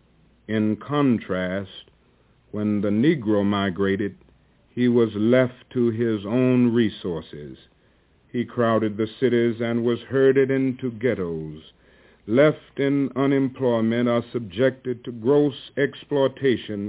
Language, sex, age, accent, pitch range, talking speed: English, male, 60-79, American, 110-130 Hz, 105 wpm